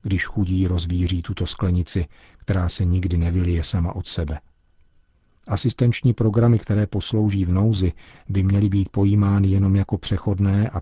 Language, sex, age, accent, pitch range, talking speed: Czech, male, 40-59, native, 90-105 Hz, 145 wpm